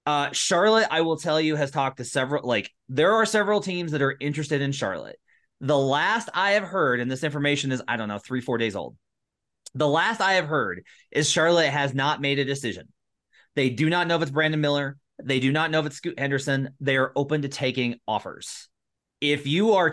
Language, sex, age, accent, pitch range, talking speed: English, male, 30-49, American, 130-160 Hz, 220 wpm